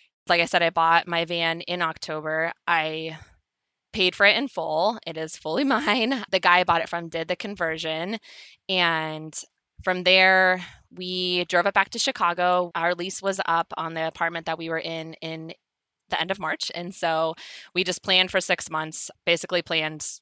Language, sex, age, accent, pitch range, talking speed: English, female, 20-39, American, 165-190 Hz, 185 wpm